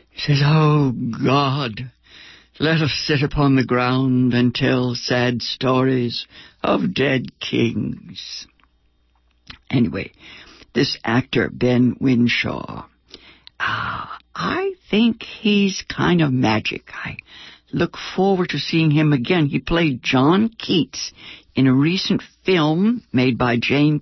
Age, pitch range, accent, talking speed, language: 60-79, 125-175 Hz, American, 115 wpm, English